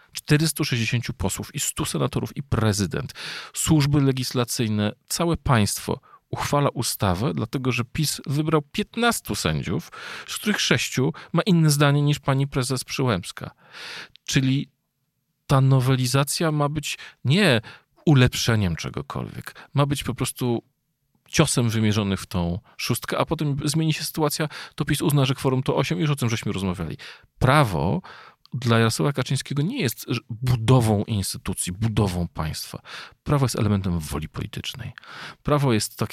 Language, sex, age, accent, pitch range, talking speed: Polish, male, 40-59, native, 100-140 Hz, 135 wpm